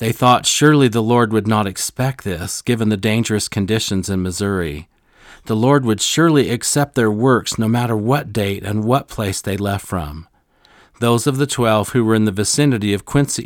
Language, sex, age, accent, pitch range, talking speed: English, male, 40-59, American, 100-120 Hz, 190 wpm